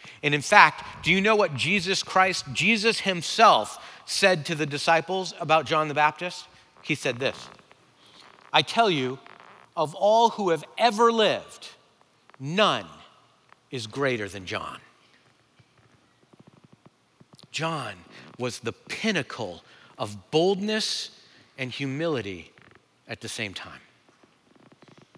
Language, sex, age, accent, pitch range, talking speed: English, male, 40-59, American, 120-175 Hz, 115 wpm